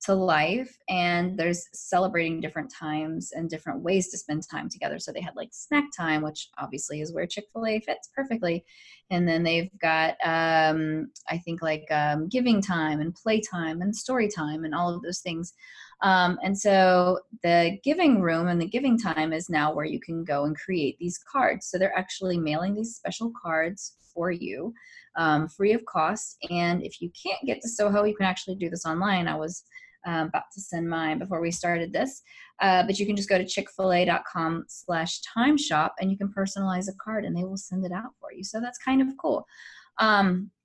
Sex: female